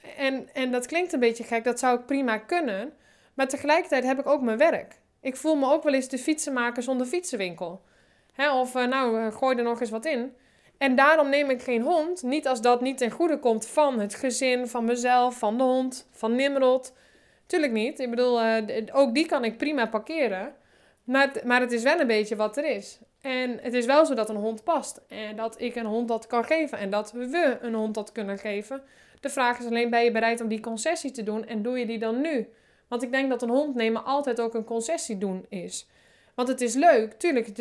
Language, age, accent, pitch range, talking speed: Dutch, 20-39, Dutch, 230-275 Hz, 230 wpm